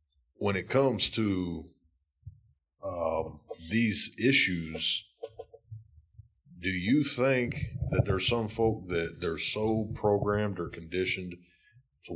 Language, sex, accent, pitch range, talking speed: English, male, American, 85-105 Hz, 105 wpm